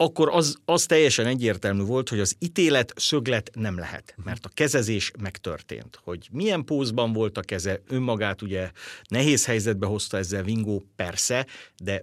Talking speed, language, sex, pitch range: 155 wpm, Hungarian, male, 100-135 Hz